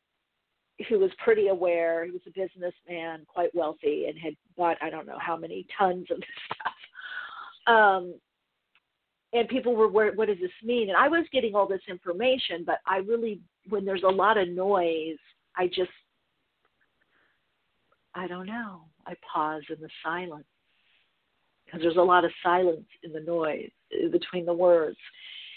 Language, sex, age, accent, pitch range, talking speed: English, female, 50-69, American, 180-255 Hz, 160 wpm